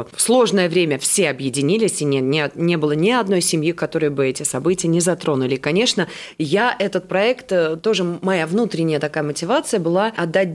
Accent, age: native, 30-49